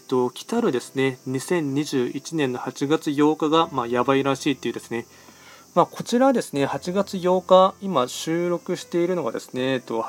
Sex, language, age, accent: male, Japanese, 20-39, native